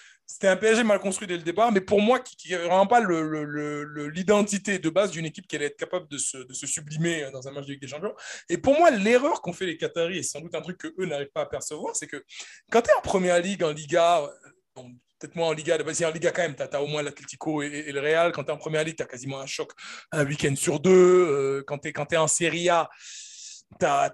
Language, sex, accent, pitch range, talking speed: French, male, French, 155-200 Hz, 275 wpm